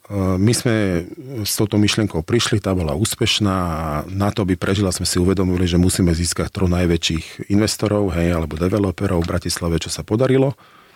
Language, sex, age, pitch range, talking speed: Slovak, male, 40-59, 80-100 Hz, 165 wpm